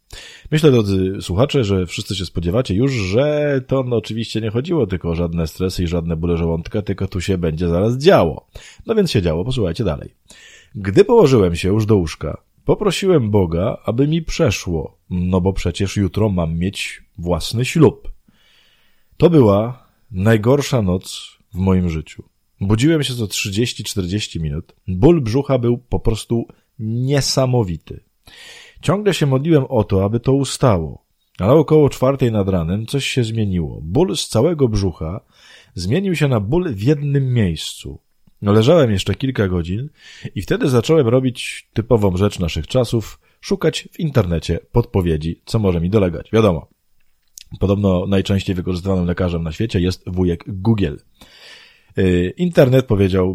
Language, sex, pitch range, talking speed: Polish, male, 90-130 Hz, 145 wpm